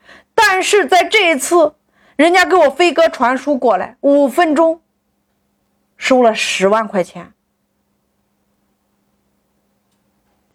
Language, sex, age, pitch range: Chinese, female, 30-49, 235-360 Hz